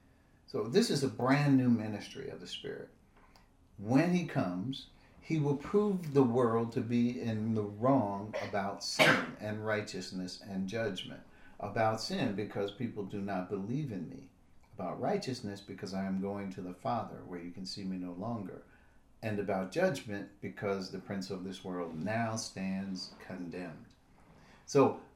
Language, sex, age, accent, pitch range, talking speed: English, male, 50-69, American, 95-135 Hz, 160 wpm